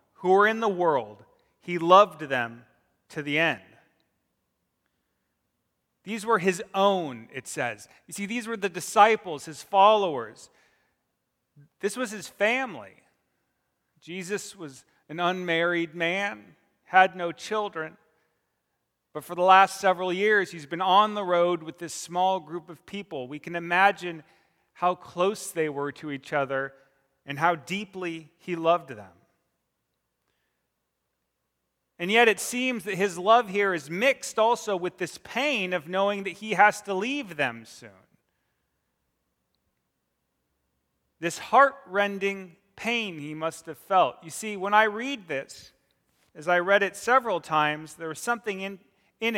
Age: 30-49